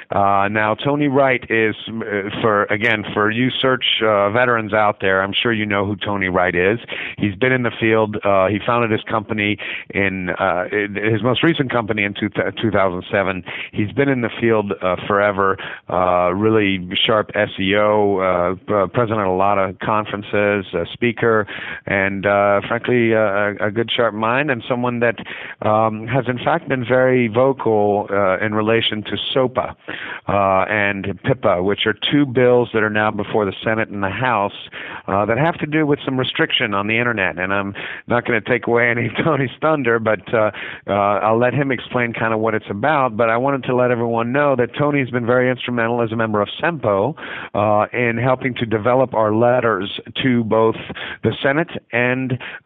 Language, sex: English, male